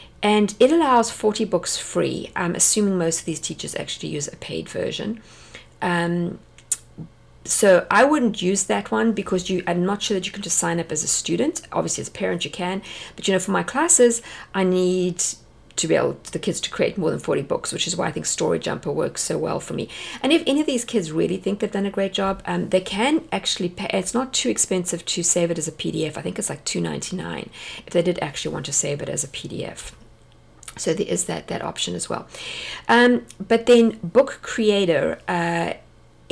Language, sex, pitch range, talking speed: English, female, 180-230 Hz, 220 wpm